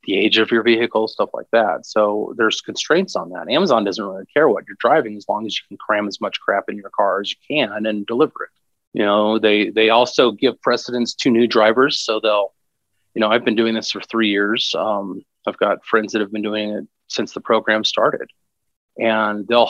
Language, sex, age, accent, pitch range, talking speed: English, male, 30-49, American, 110-125 Hz, 225 wpm